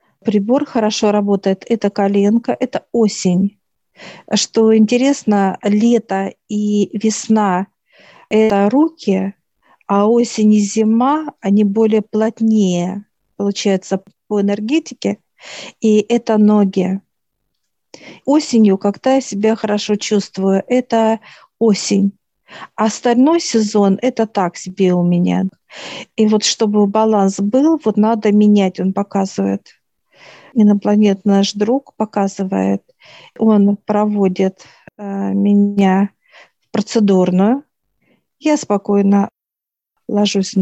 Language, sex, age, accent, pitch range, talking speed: Russian, female, 50-69, native, 195-220 Hz, 95 wpm